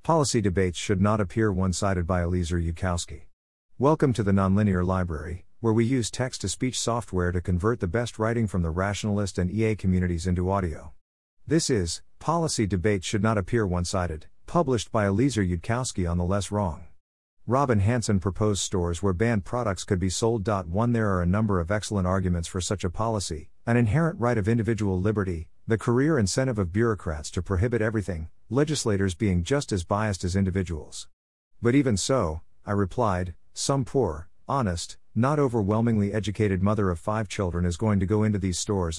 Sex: male